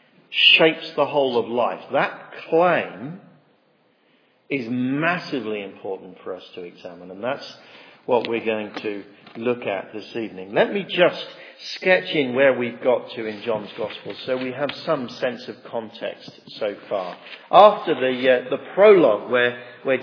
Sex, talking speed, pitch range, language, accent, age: male, 155 wpm, 125-190 Hz, English, British, 50-69